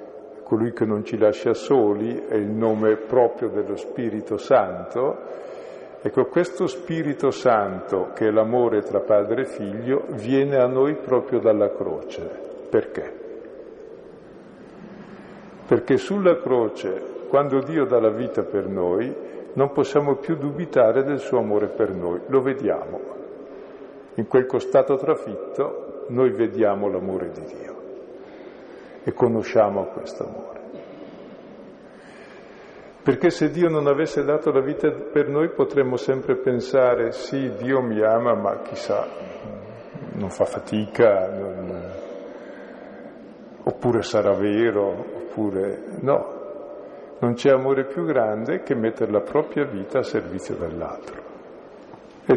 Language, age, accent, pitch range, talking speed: Italian, 50-69, native, 110-165 Hz, 120 wpm